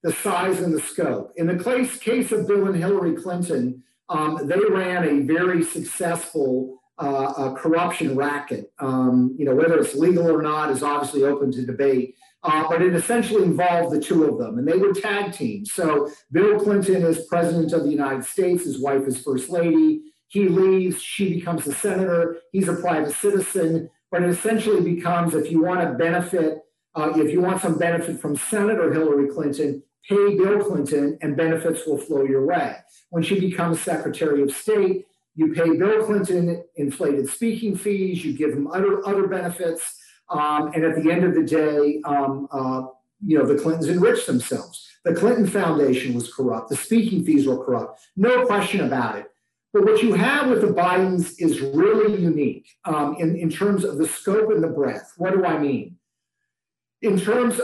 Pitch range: 150-200 Hz